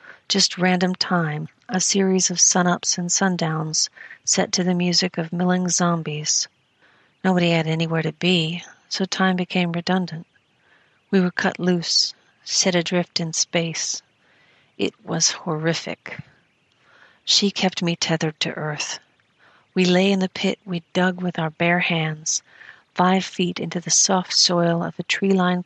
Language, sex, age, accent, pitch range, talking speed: English, female, 40-59, American, 170-185 Hz, 150 wpm